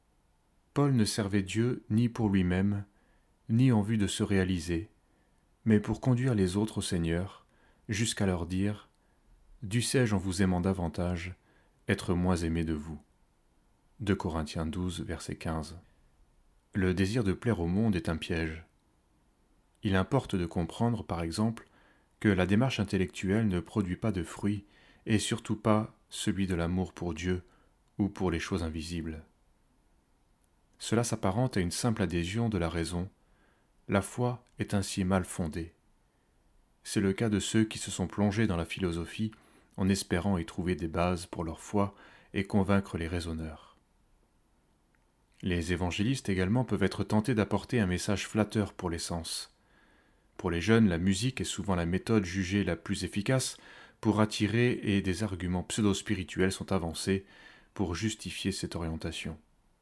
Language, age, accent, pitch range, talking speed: French, 30-49, French, 85-105 Hz, 155 wpm